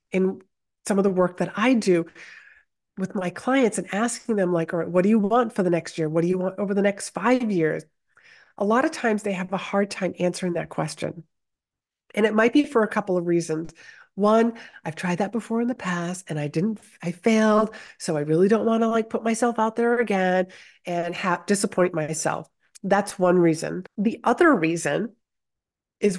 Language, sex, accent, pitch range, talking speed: English, female, American, 170-225 Hz, 205 wpm